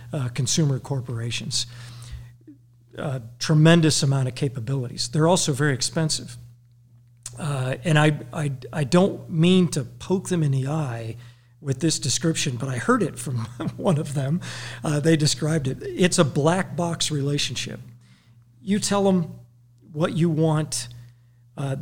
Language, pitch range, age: English, 120-155 Hz, 50-69